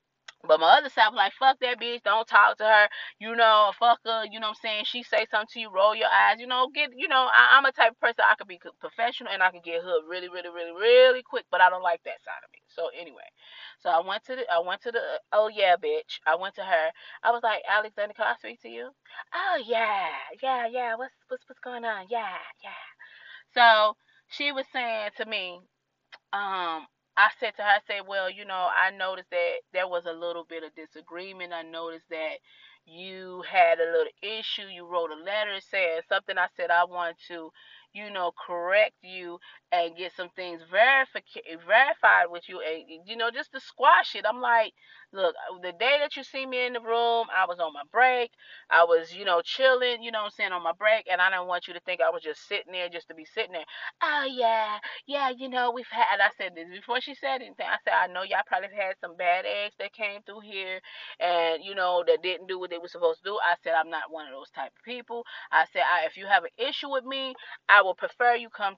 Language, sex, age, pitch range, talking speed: English, female, 20-39, 175-245 Hz, 240 wpm